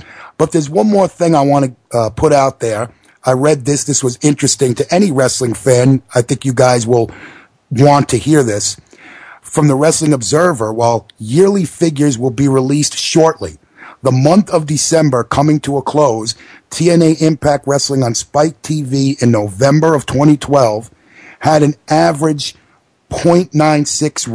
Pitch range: 125-150 Hz